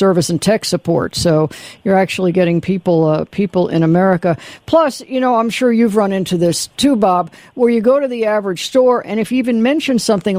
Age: 60-79